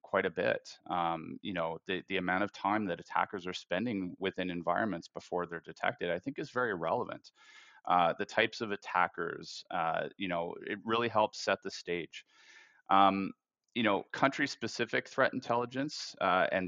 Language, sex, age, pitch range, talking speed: English, male, 30-49, 85-100 Hz, 175 wpm